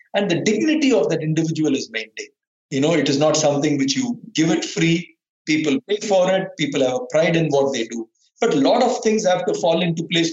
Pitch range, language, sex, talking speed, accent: 145-170 Hz, English, male, 240 wpm, Indian